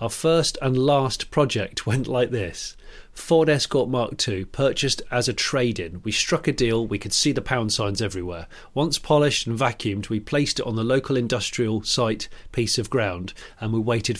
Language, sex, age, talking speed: English, male, 40-59, 190 wpm